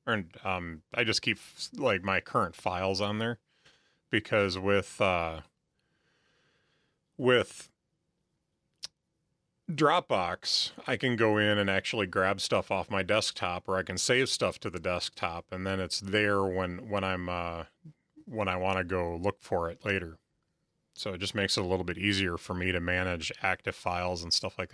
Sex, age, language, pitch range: male, 30-49, English, 90-120 Hz